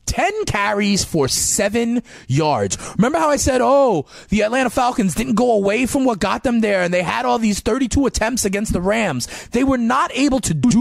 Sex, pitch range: male, 155-230 Hz